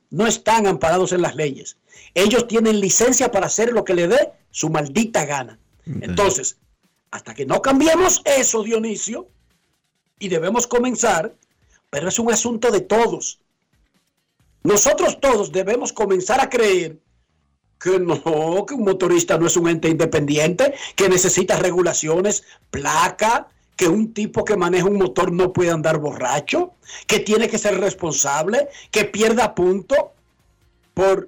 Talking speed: 140 wpm